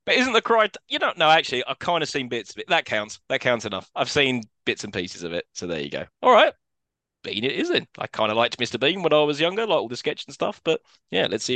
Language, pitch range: English, 115-155 Hz